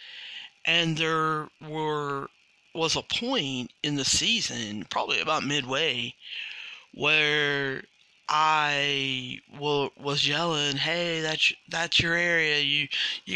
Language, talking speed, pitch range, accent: English, 110 wpm, 135-165 Hz, American